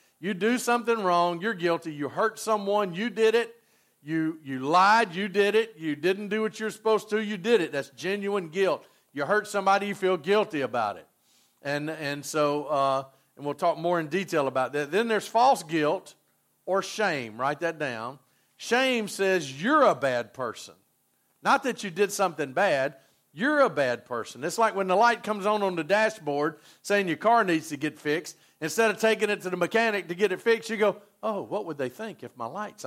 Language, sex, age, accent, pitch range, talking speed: English, male, 50-69, American, 145-210 Hz, 210 wpm